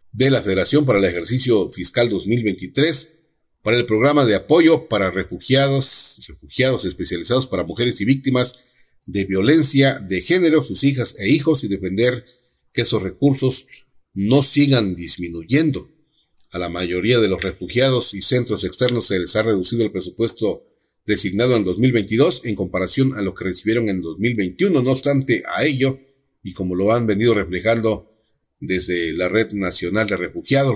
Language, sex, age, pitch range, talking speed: Spanish, male, 40-59, 95-130 Hz, 155 wpm